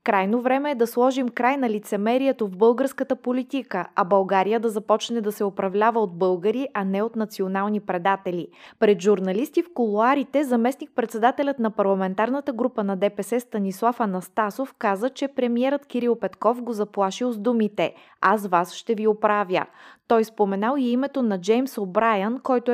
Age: 20-39